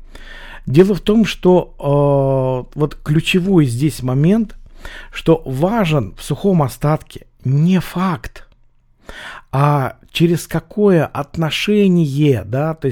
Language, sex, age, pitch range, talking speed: Russian, male, 50-69, 130-165 Hz, 100 wpm